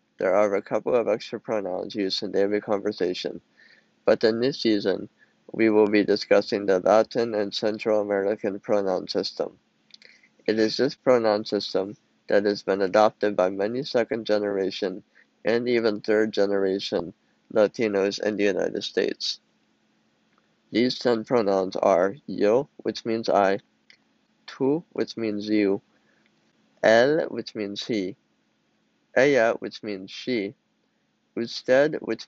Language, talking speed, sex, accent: English, 130 wpm, male, American